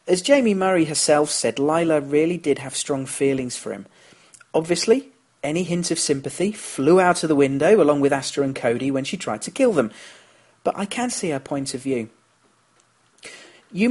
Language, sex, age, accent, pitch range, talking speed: English, male, 40-59, British, 125-160 Hz, 185 wpm